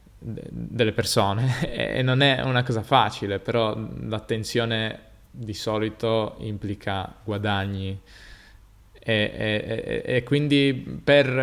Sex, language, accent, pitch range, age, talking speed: male, Italian, native, 110-125 Hz, 20-39, 100 wpm